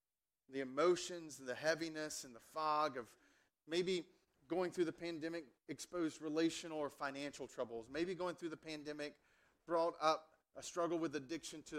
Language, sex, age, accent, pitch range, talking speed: English, male, 30-49, American, 130-165 Hz, 160 wpm